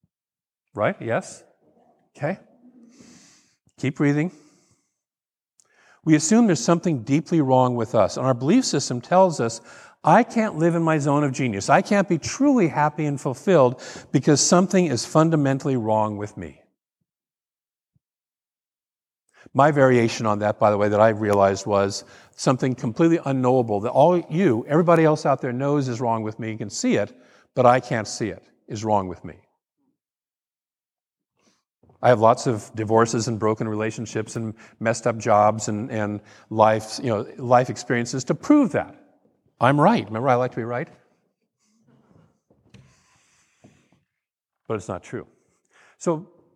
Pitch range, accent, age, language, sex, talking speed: 115-160 Hz, American, 50-69, English, male, 150 wpm